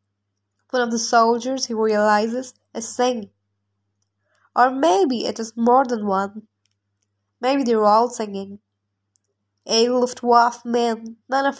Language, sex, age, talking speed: Hindi, female, 10-29, 140 wpm